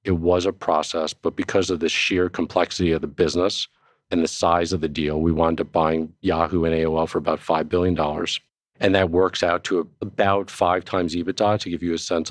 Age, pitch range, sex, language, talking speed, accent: 40-59, 80-95 Hz, male, English, 215 wpm, American